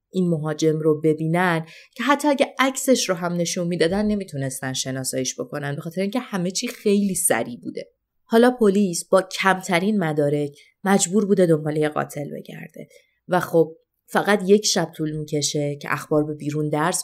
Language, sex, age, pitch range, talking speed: Persian, female, 20-39, 150-200 Hz, 160 wpm